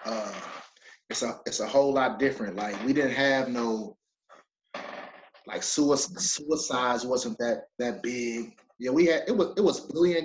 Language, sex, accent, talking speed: English, male, American, 165 wpm